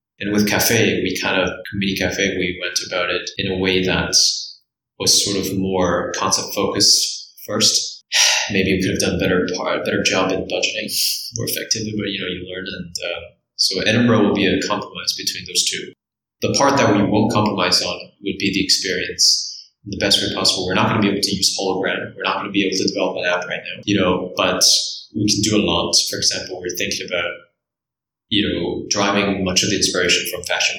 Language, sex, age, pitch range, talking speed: English, male, 20-39, 95-105 Hz, 210 wpm